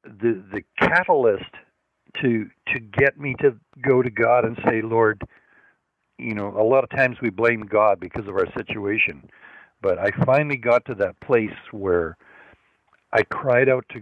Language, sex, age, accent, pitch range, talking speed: English, male, 60-79, American, 105-135 Hz, 165 wpm